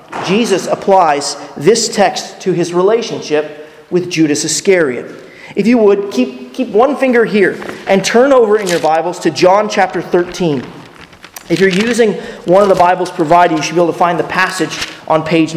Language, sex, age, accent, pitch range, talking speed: English, male, 30-49, American, 160-220 Hz, 175 wpm